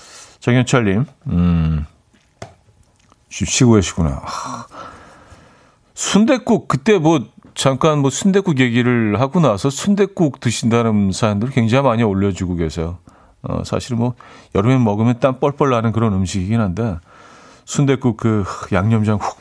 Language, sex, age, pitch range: Korean, male, 40-59, 95-145 Hz